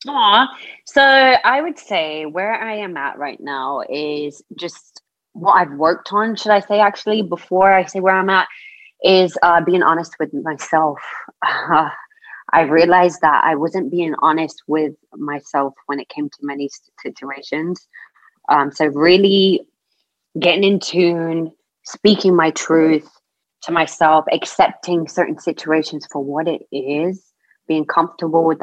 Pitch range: 155-190 Hz